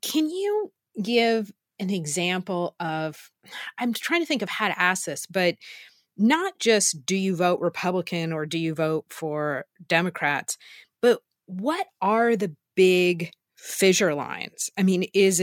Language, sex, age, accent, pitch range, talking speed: English, female, 30-49, American, 165-215 Hz, 150 wpm